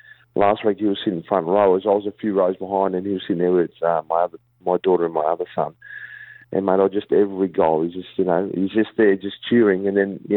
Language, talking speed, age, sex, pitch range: English, 285 wpm, 40-59, male, 95-110 Hz